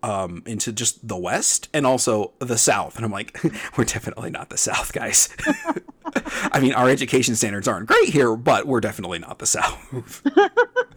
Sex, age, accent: male, 30-49, American